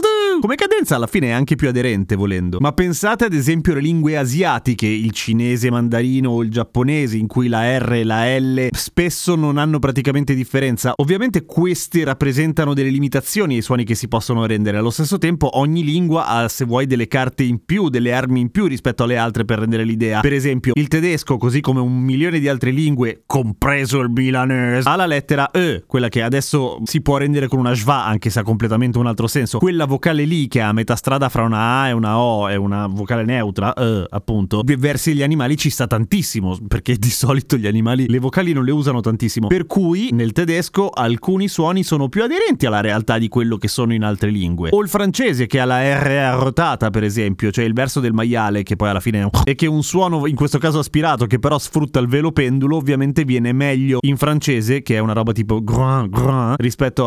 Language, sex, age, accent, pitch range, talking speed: Italian, male, 30-49, native, 115-150 Hz, 215 wpm